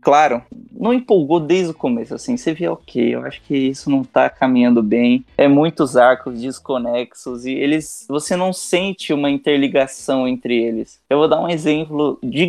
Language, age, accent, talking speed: Portuguese, 20-39, Brazilian, 180 wpm